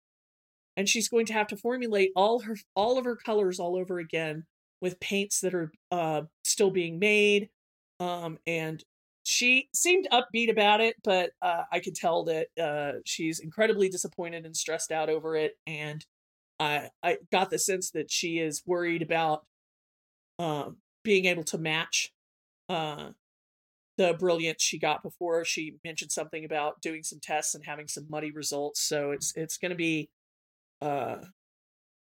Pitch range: 160-205 Hz